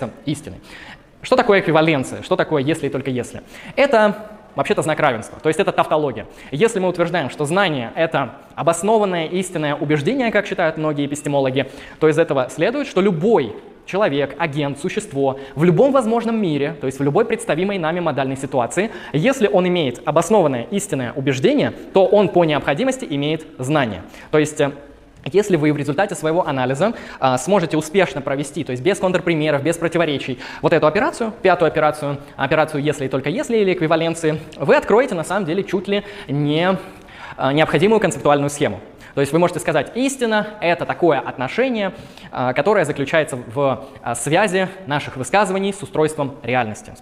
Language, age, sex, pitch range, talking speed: Russian, 20-39, male, 140-190 Hz, 155 wpm